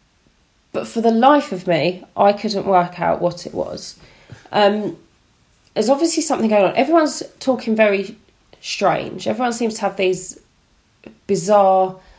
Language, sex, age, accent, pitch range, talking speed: English, female, 30-49, British, 180-220 Hz, 145 wpm